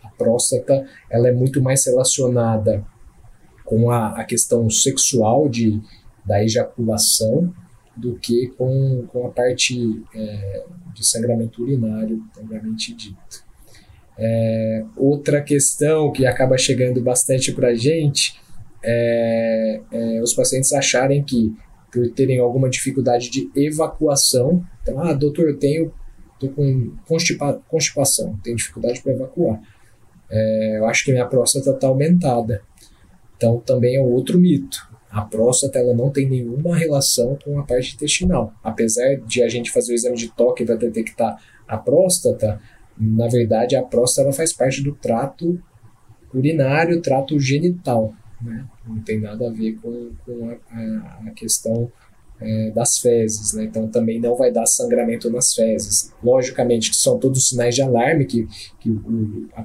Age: 20-39